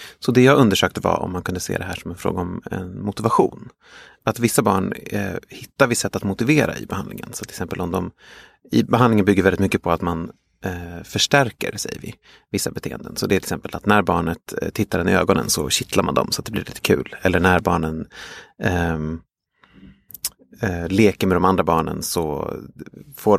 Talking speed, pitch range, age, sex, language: 210 wpm, 85-105 Hz, 30-49, male, Swedish